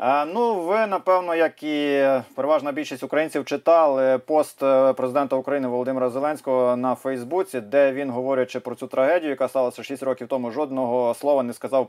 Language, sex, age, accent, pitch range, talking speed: Ukrainian, male, 30-49, native, 130-160 Hz, 155 wpm